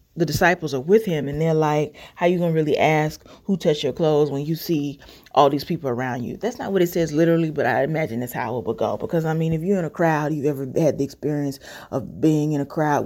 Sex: female